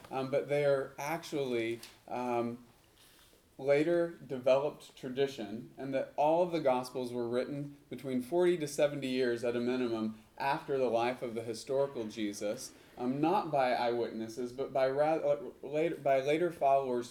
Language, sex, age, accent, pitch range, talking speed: English, male, 30-49, American, 120-150 Hz, 145 wpm